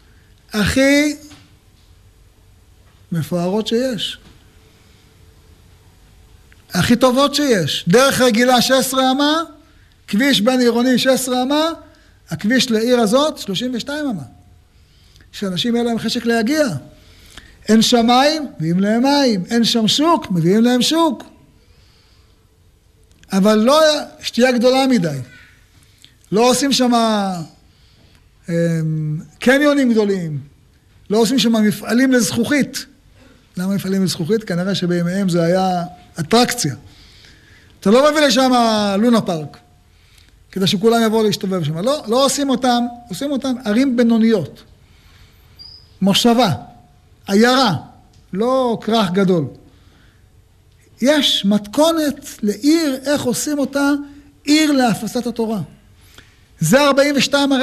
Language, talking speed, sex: Hebrew, 100 wpm, male